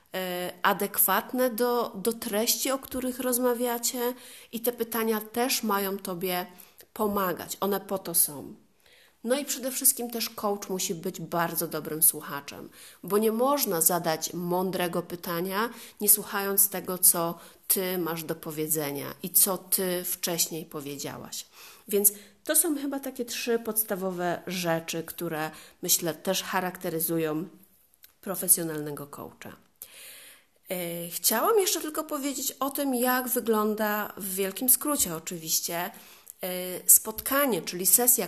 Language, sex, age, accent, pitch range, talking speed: Polish, female, 40-59, native, 175-245 Hz, 120 wpm